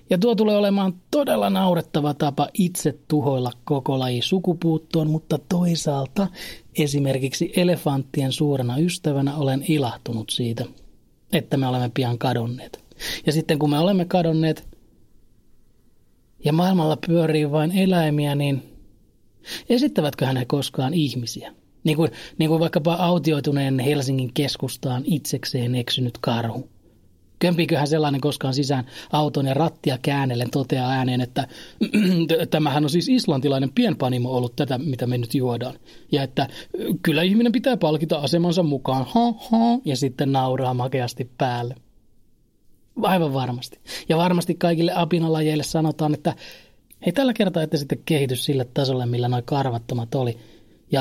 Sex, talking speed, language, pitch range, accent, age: male, 130 wpm, Finnish, 130-165 Hz, native, 30-49